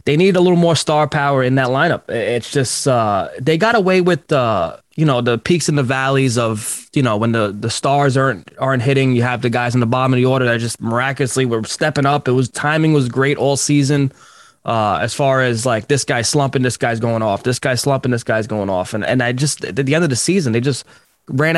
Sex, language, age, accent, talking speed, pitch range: male, English, 20-39, American, 250 wpm, 125-150 Hz